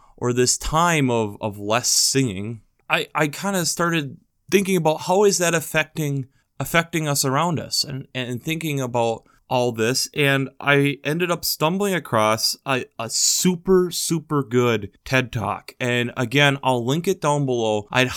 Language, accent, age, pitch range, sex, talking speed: English, American, 20-39, 125-170 Hz, male, 160 wpm